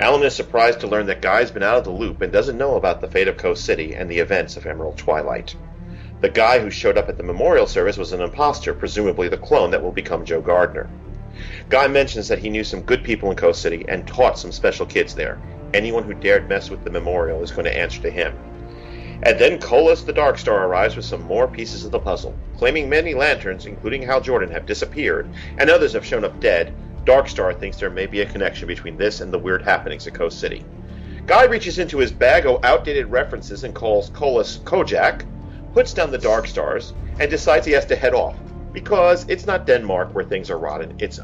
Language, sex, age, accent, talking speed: English, male, 40-59, American, 225 wpm